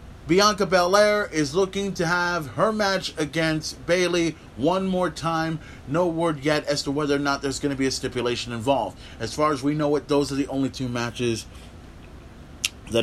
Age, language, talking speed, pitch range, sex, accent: 30-49, English, 190 wpm, 95-150 Hz, male, American